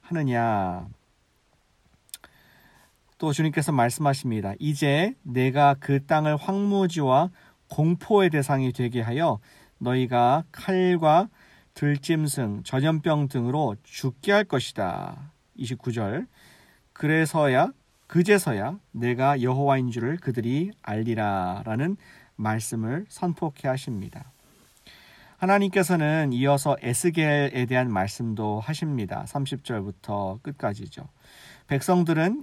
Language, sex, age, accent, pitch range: Korean, male, 40-59, native, 125-160 Hz